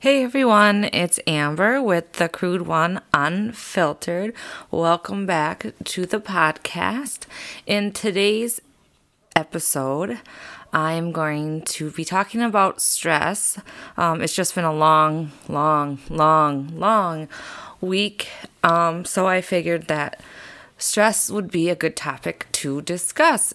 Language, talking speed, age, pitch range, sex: English, 120 wpm, 20-39, 145-185 Hz, female